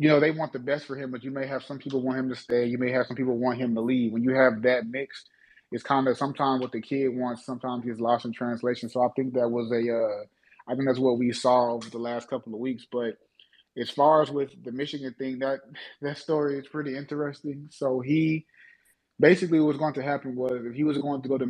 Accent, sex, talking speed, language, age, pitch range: American, male, 260 wpm, English, 20-39, 125-140 Hz